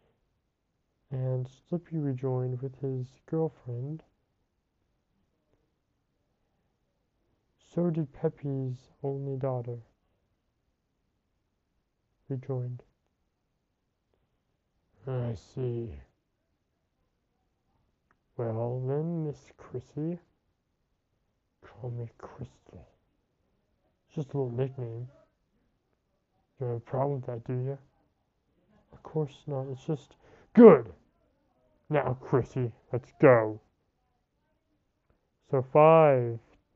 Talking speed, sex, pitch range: 75 wpm, male, 120-145 Hz